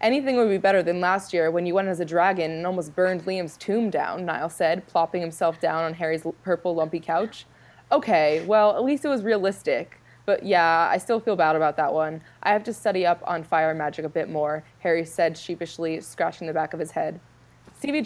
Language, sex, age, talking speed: English, female, 20-39, 220 wpm